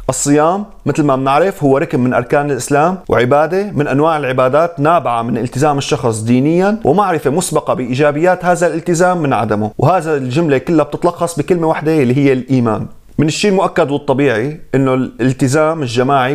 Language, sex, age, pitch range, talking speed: Arabic, male, 30-49, 130-170 Hz, 150 wpm